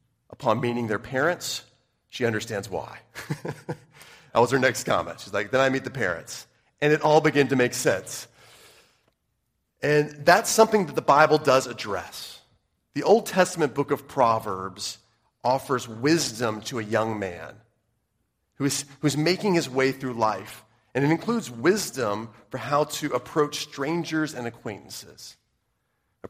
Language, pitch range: English, 105-145 Hz